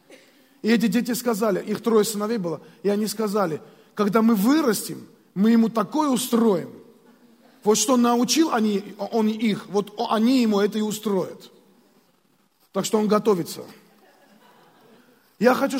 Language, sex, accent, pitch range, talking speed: Russian, male, native, 210-245 Hz, 140 wpm